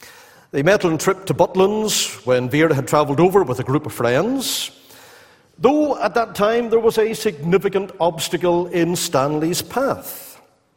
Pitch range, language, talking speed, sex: 140-195 Hz, English, 160 wpm, male